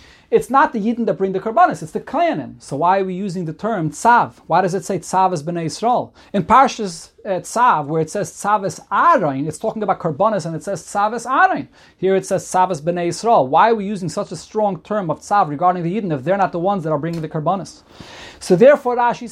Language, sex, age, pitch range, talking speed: English, male, 30-49, 170-215 Hz, 235 wpm